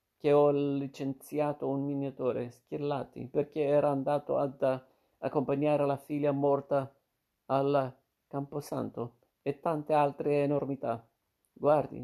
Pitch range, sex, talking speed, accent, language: 125-140 Hz, male, 105 wpm, native, Italian